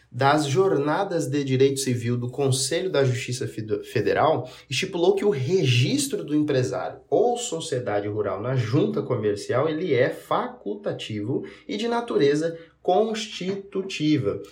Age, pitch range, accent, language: 20-39, 125-170 Hz, Brazilian, Portuguese